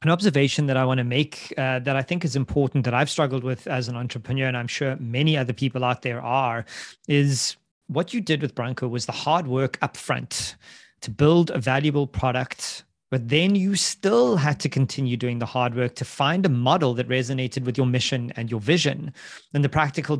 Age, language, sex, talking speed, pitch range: 30-49, English, male, 210 wpm, 130-160 Hz